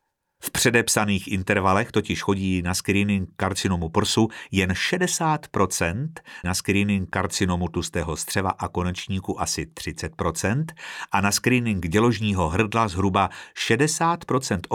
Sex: male